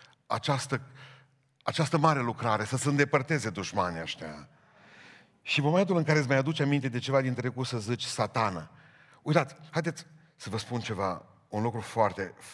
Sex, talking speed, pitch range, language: male, 165 wpm, 110-150 Hz, Romanian